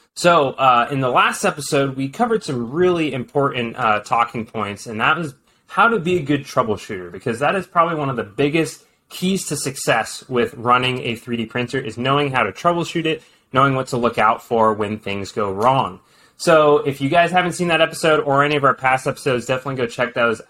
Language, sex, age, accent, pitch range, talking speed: English, male, 20-39, American, 120-155 Hz, 215 wpm